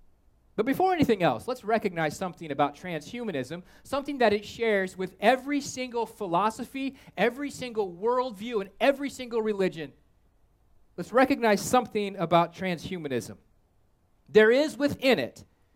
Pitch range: 175-250 Hz